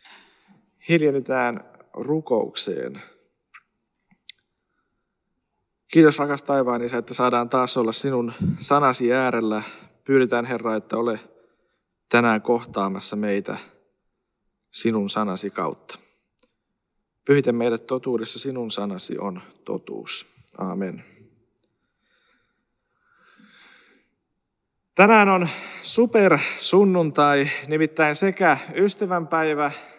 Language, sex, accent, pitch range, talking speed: Finnish, male, native, 120-160 Hz, 70 wpm